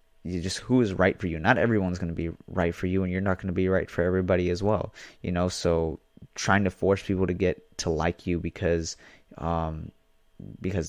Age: 20-39